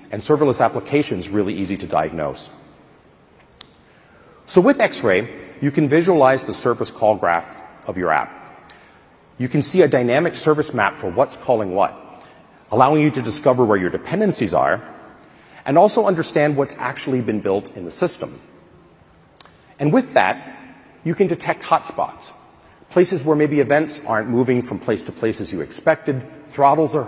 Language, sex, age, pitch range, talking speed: English, male, 40-59, 115-150 Hz, 155 wpm